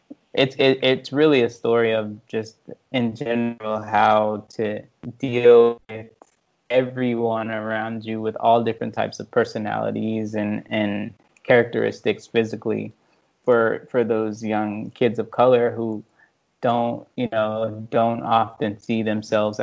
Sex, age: male, 20-39